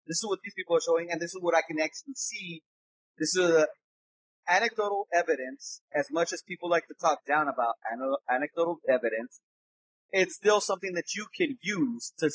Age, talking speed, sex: 30-49, 185 wpm, male